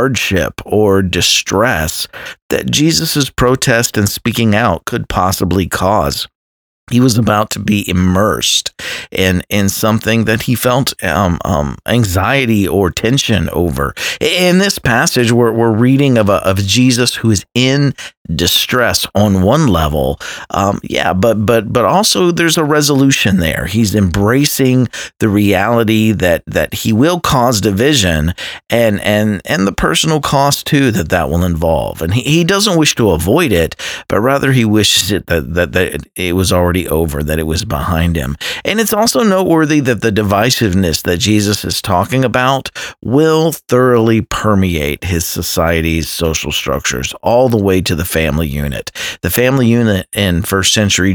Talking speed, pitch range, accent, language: 160 wpm, 85-125 Hz, American, English